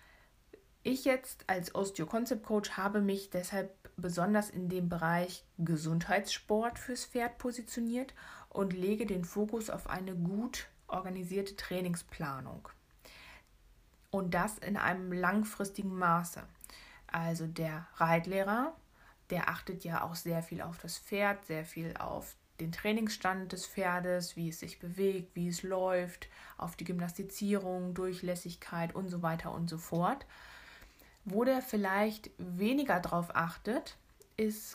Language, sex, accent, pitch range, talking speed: German, female, German, 175-210 Hz, 125 wpm